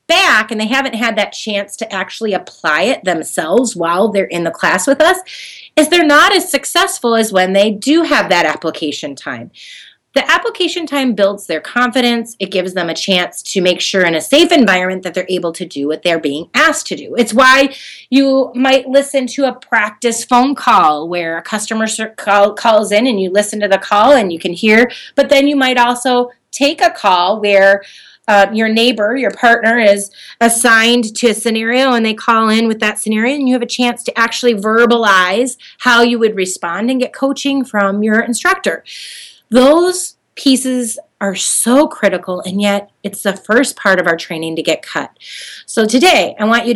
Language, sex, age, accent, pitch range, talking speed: English, female, 30-49, American, 195-265 Hz, 195 wpm